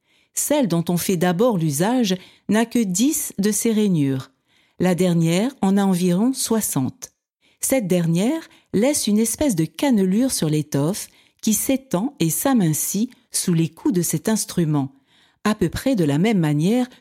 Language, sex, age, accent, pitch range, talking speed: French, female, 50-69, French, 165-235 Hz, 155 wpm